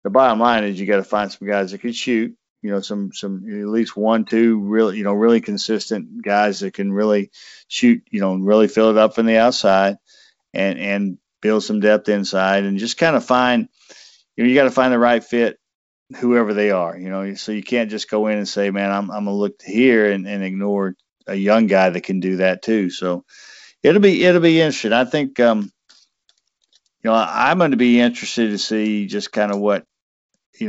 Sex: male